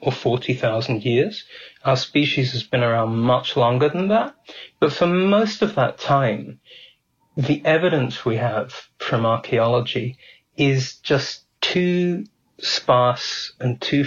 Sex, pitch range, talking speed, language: male, 120-150 Hz, 130 wpm, English